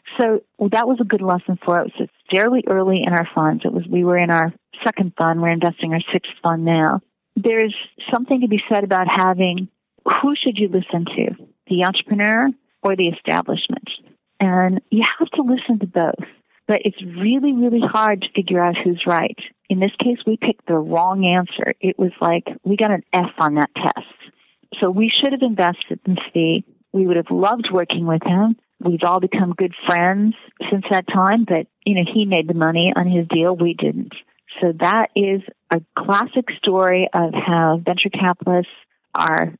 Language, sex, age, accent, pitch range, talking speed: English, female, 40-59, American, 175-220 Hz, 190 wpm